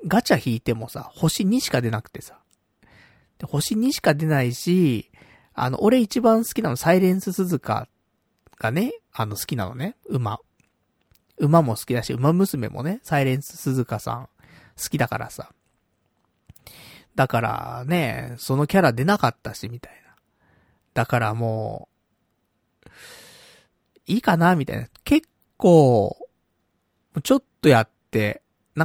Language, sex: Japanese, male